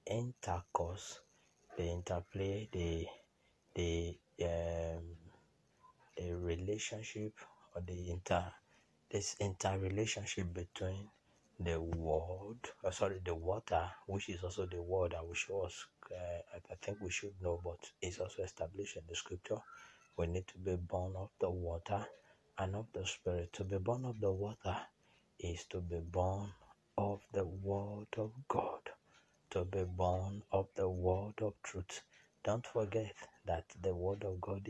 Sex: male